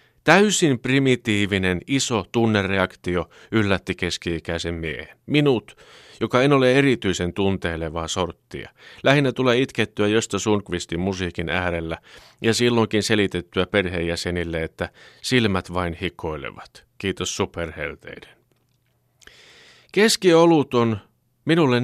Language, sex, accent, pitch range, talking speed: Finnish, male, native, 90-125 Hz, 95 wpm